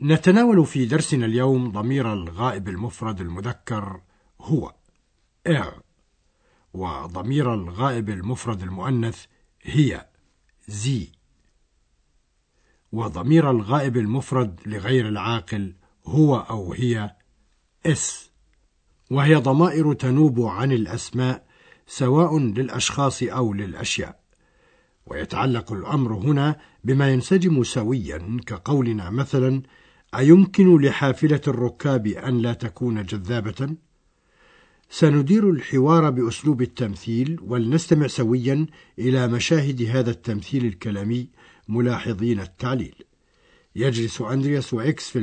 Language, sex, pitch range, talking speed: Arabic, male, 105-135 Hz, 90 wpm